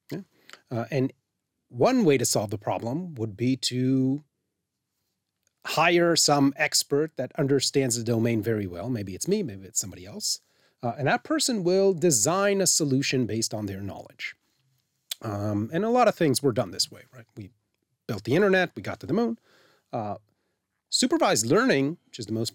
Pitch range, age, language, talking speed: 115-175 Hz, 30-49, English, 175 wpm